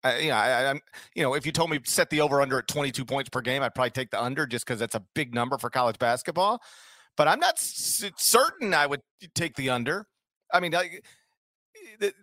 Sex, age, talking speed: male, 40-59, 230 wpm